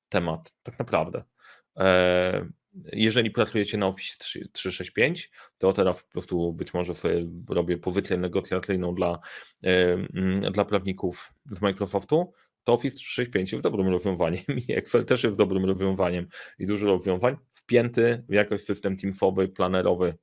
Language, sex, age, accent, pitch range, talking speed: Polish, male, 30-49, native, 90-105 Hz, 130 wpm